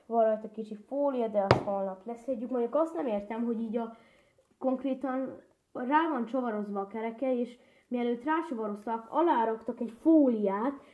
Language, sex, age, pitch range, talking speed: Hungarian, female, 20-39, 210-245 Hz, 150 wpm